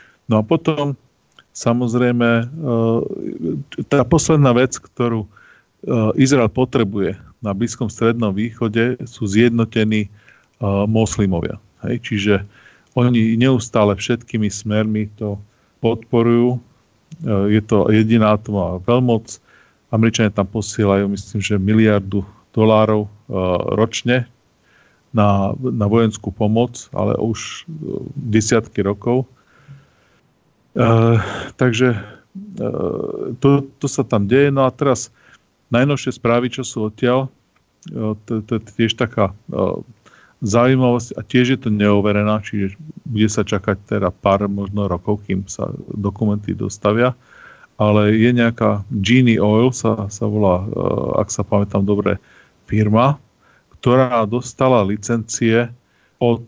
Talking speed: 110 wpm